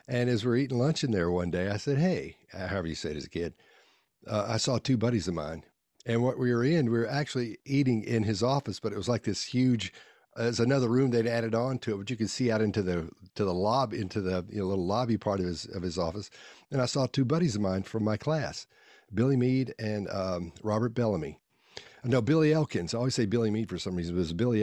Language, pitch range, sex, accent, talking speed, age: English, 95-125 Hz, male, American, 260 wpm, 50-69